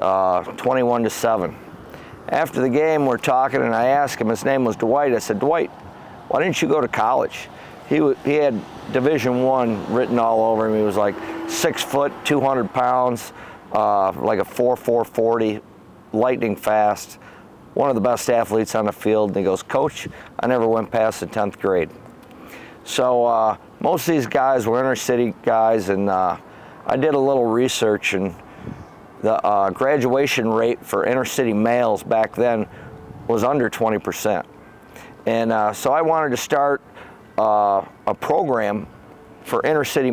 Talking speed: 170 wpm